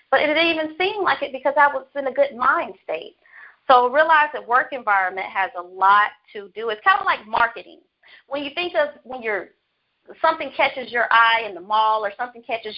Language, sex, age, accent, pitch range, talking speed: English, female, 40-59, American, 215-290 Hz, 210 wpm